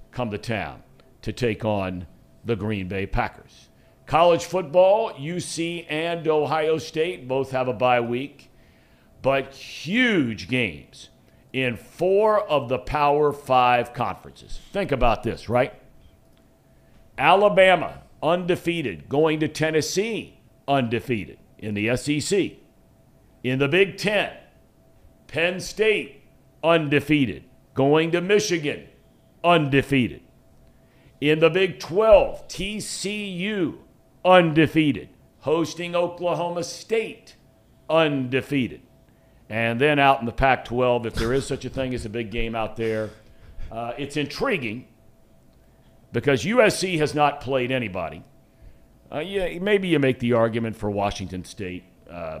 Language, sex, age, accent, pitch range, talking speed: English, male, 60-79, American, 120-170 Hz, 120 wpm